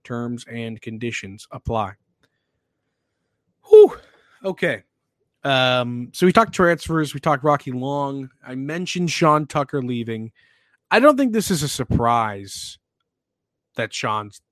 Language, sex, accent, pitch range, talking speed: English, male, American, 120-150 Hz, 120 wpm